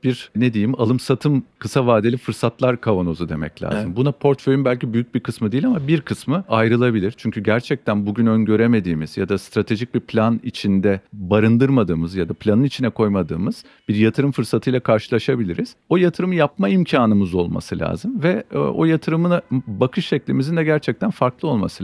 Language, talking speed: Turkish, 155 wpm